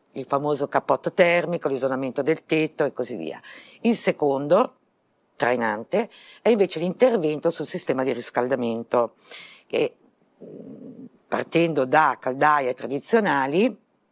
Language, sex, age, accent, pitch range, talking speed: Italian, female, 50-69, native, 140-190 Hz, 105 wpm